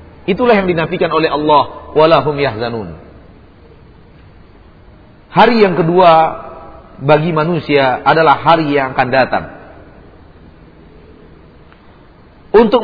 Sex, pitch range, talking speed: male, 145-200 Hz, 85 wpm